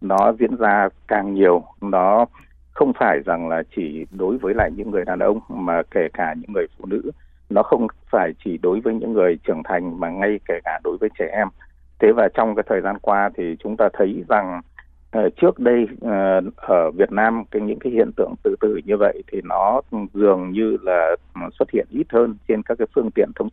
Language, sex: Vietnamese, male